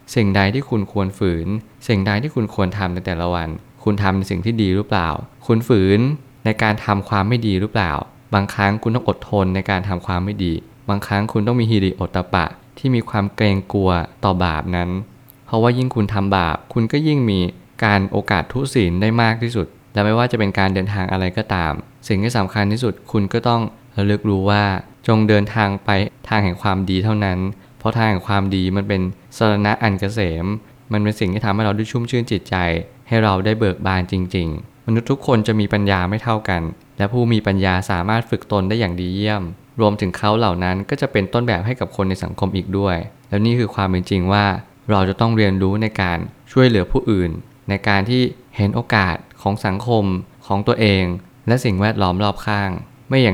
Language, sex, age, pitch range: Thai, male, 20-39, 95-115 Hz